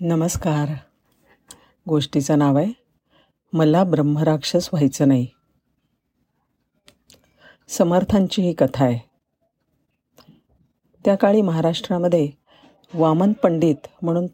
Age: 50-69